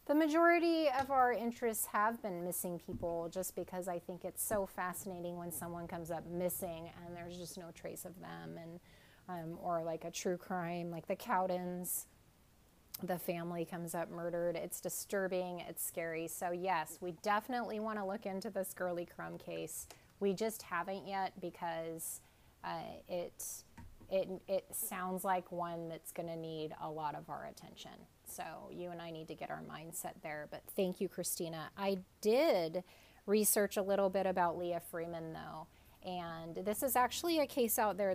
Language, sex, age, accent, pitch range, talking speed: English, female, 20-39, American, 170-200 Hz, 175 wpm